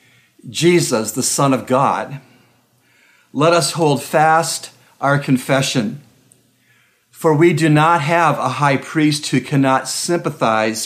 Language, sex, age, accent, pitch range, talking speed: English, male, 50-69, American, 125-150 Hz, 120 wpm